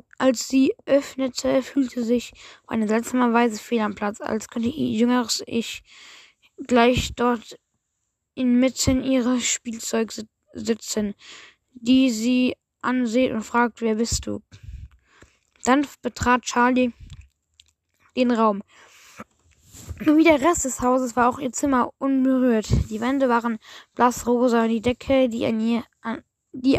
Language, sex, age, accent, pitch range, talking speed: German, female, 10-29, German, 225-255 Hz, 130 wpm